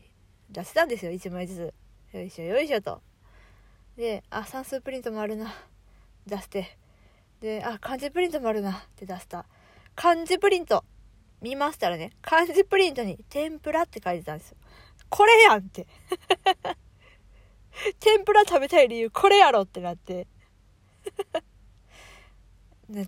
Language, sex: Japanese, female